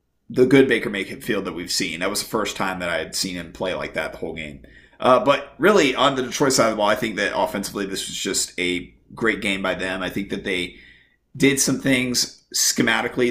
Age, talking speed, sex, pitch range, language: 30-49, 245 wpm, male, 100-125 Hz, English